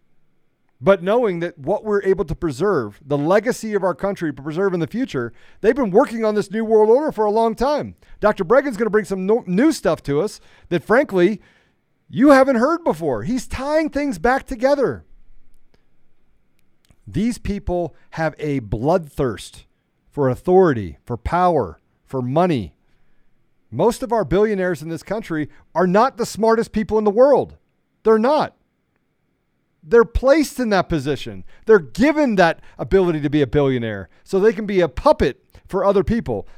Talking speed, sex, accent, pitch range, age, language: 165 wpm, male, American, 165-230 Hz, 40-59, English